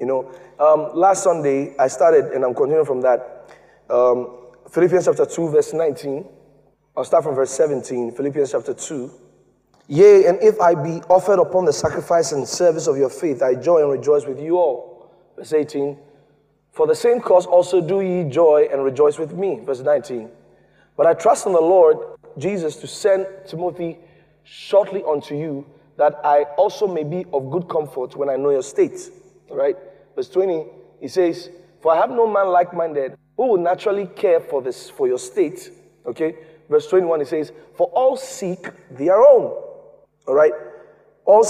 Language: English